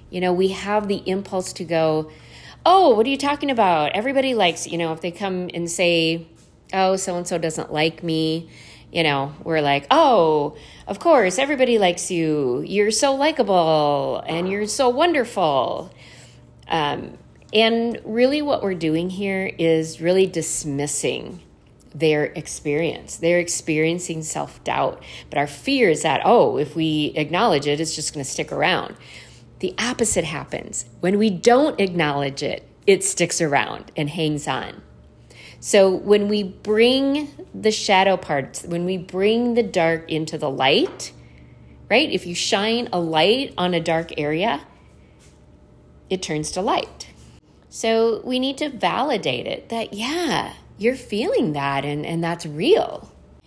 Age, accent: 40-59, American